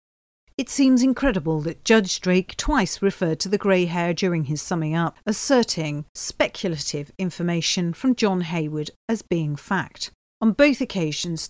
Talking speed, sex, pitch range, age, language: 145 wpm, female, 160-225 Hz, 40-59, English